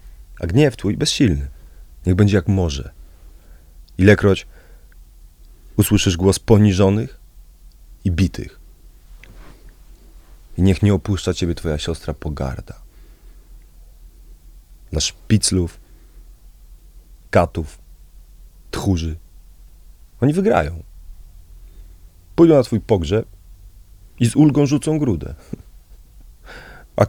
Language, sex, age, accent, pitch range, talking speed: Polish, male, 30-49, native, 80-95 Hz, 85 wpm